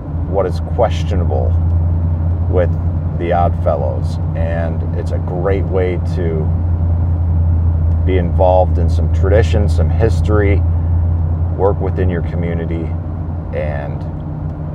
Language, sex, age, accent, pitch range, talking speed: English, male, 40-59, American, 80-90 Hz, 100 wpm